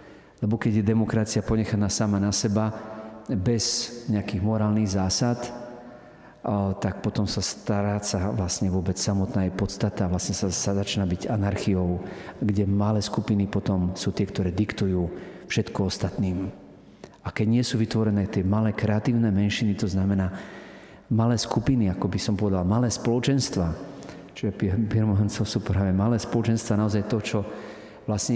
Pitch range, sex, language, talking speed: 100-115 Hz, male, Slovak, 140 wpm